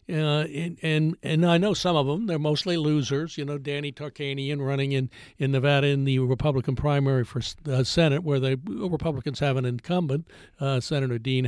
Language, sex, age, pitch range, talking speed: English, male, 60-79, 140-175 Hz, 195 wpm